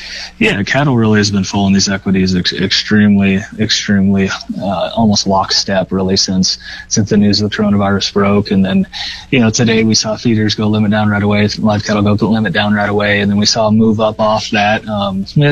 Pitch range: 105-115 Hz